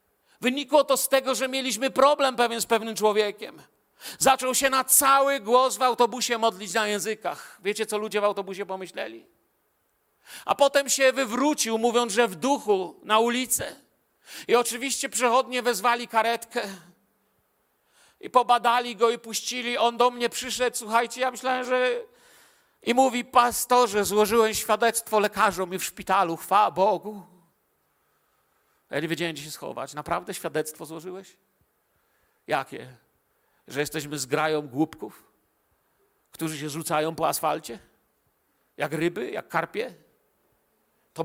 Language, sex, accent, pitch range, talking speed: Polish, male, native, 160-245 Hz, 130 wpm